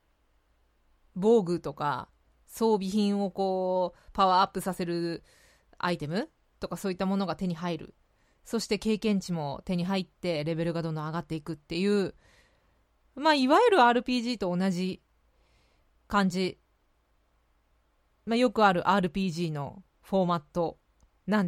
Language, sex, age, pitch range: Japanese, female, 20-39, 170-235 Hz